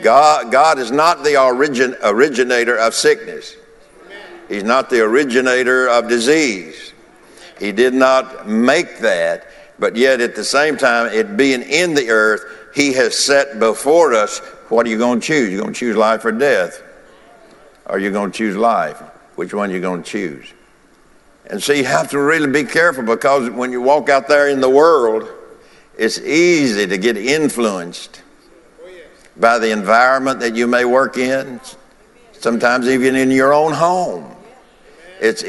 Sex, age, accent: male, 60-79, American